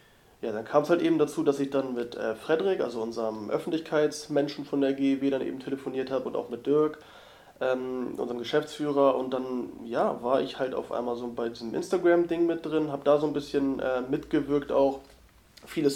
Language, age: German, 30-49